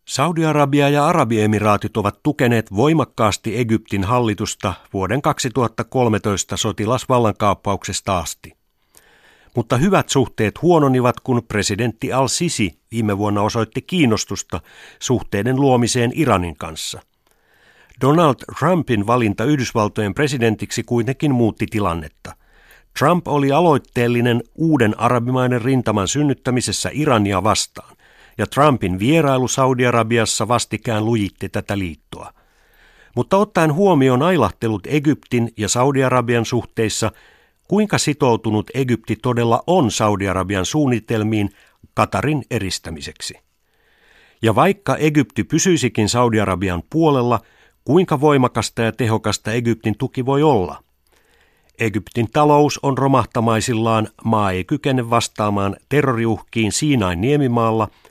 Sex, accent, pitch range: male, native, 105-135 Hz